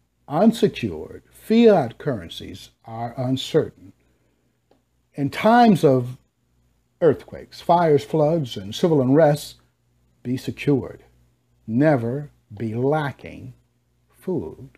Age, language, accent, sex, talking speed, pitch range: 60-79, English, American, male, 80 wpm, 105-165 Hz